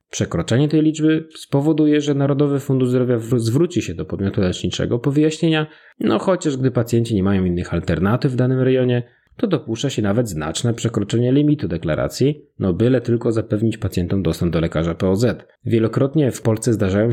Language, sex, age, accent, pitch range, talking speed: Polish, male, 30-49, native, 100-140 Hz, 165 wpm